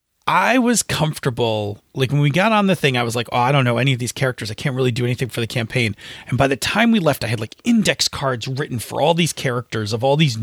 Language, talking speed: English, 275 wpm